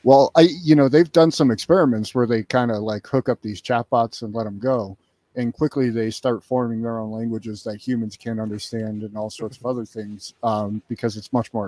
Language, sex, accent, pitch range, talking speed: English, male, American, 110-130 Hz, 225 wpm